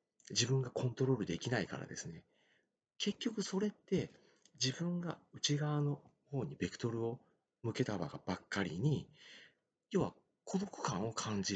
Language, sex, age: Japanese, male, 40-59